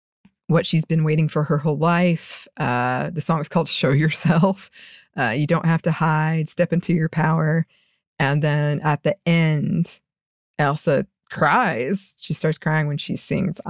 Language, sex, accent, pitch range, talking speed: English, female, American, 160-195 Hz, 165 wpm